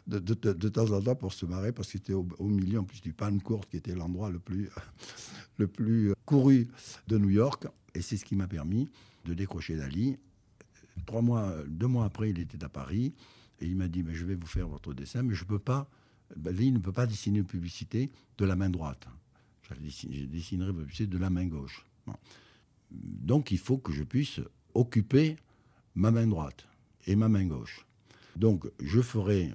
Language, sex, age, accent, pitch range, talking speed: French, male, 60-79, French, 85-115 Hz, 210 wpm